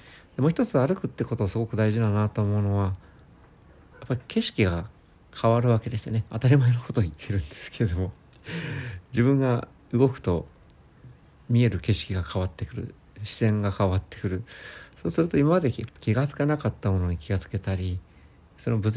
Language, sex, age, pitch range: Japanese, male, 50-69, 95-120 Hz